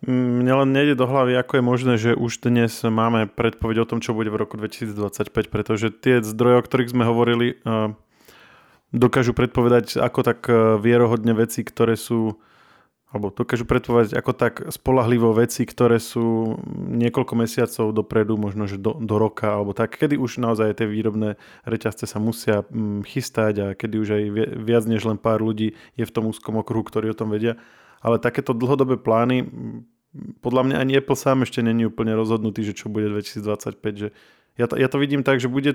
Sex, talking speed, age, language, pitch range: male, 175 wpm, 20-39, Slovak, 110-125 Hz